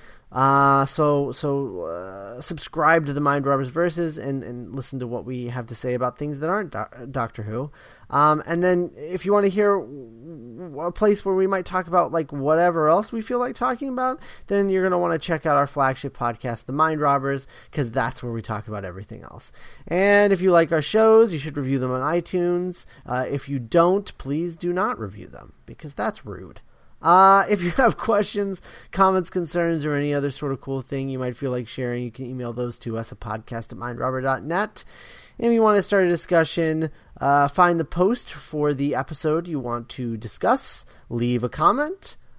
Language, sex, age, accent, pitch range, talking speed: English, male, 30-49, American, 125-175 Hz, 205 wpm